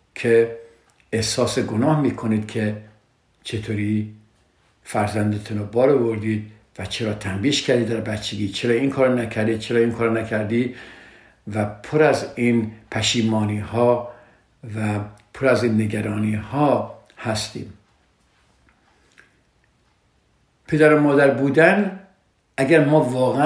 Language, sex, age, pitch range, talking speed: Persian, male, 50-69, 110-135 Hz, 110 wpm